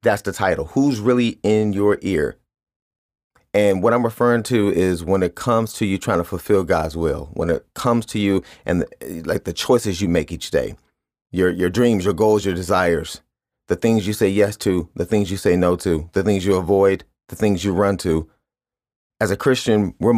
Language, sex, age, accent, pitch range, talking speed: English, male, 30-49, American, 90-110 Hz, 205 wpm